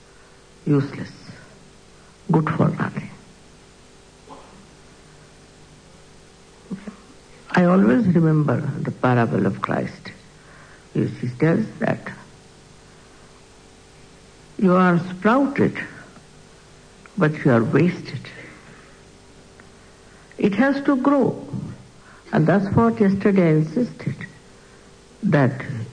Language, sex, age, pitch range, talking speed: English, female, 60-79, 145-210 Hz, 75 wpm